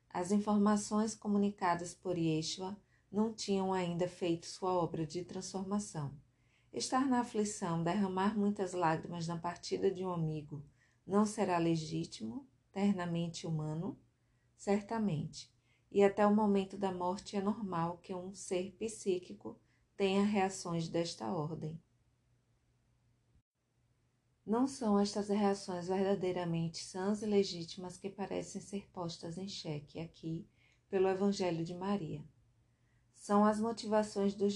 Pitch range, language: 160-200 Hz, Portuguese